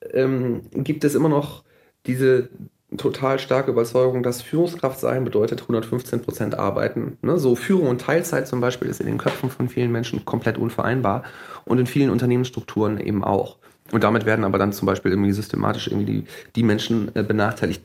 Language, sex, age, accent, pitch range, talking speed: German, male, 30-49, German, 110-155 Hz, 165 wpm